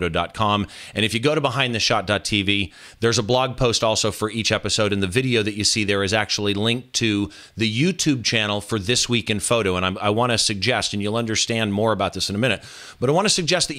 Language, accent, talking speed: English, American, 230 wpm